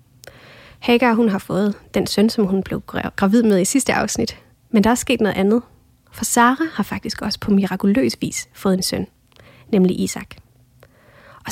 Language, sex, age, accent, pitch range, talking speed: English, female, 30-49, Danish, 160-220 Hz, 180 wpm